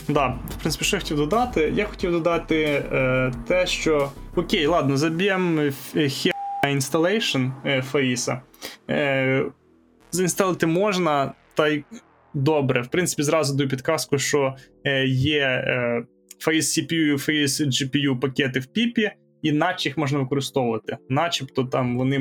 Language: Ukrainian